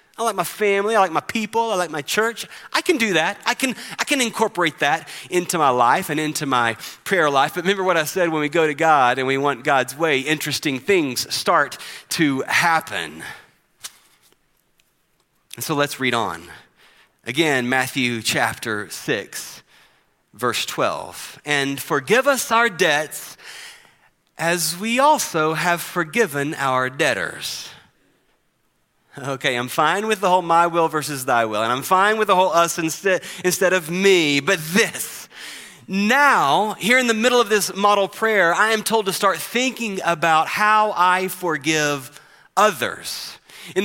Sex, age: male, 30-49